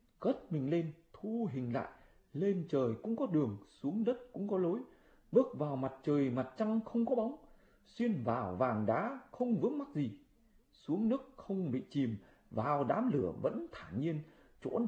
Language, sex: Vietnamese, male